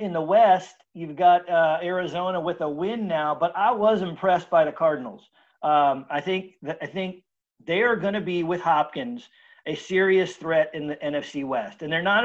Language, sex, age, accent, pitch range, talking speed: English, male, 40-59, American, 160-210 Hz, 200 wpm